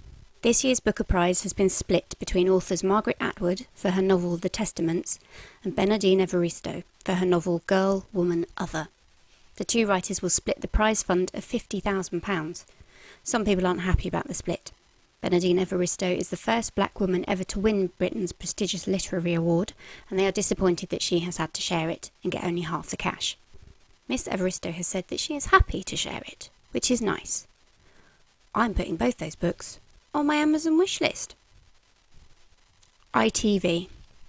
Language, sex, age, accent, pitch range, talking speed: English, female, 30-49, British, 180-205 Hz, 170 wpm